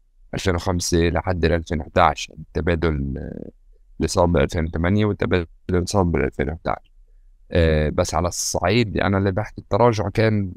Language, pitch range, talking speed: Arabic, 80-100 Hz, 110 wpm